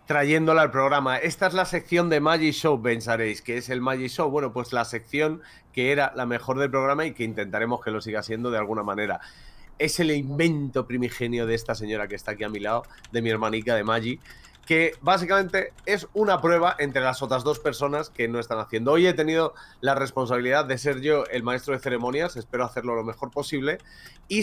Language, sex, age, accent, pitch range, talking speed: Spanish, male, 30-49, Spanish, 115-155 Hz, 210 wpm